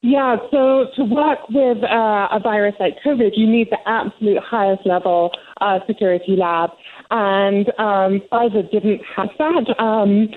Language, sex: English, female